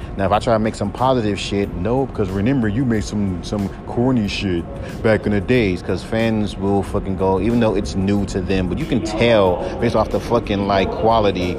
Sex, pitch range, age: male, 95-115 Hz, 30-49